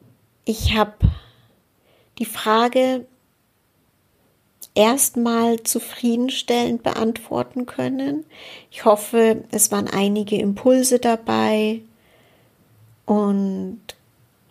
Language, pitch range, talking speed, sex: German, 190-235 Hz, 65 wpm, female